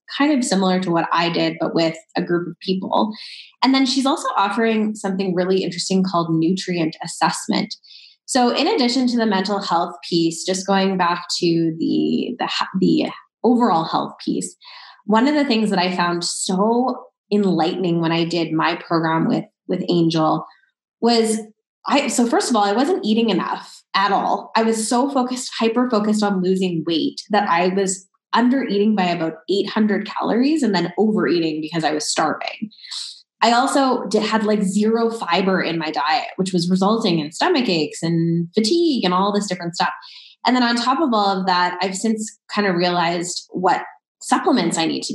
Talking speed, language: 180 wpm, English